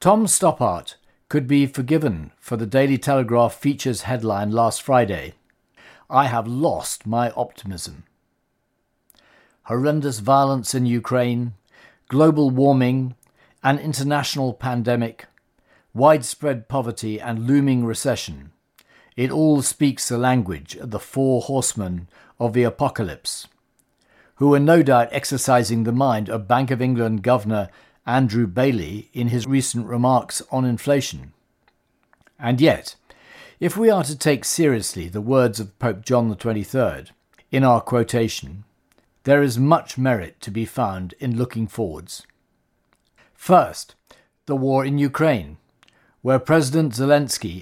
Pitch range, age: 115-140 Hz, 50-69